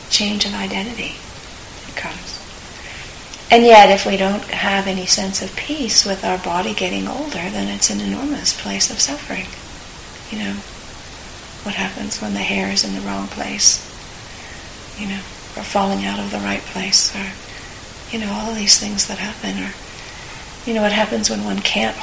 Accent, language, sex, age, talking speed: American, English, female, 40-59, 175 wpm